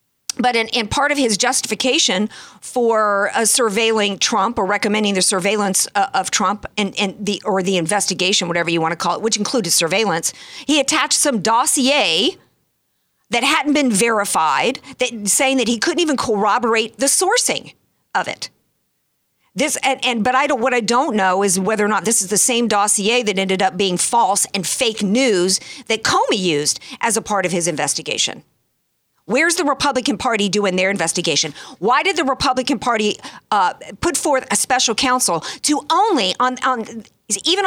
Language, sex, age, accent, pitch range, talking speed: English, female, 50-69, American, 195-260 Hz, 175 wpm